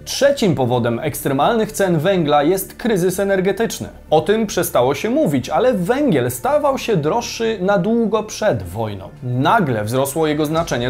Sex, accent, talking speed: male, native, 145 wpm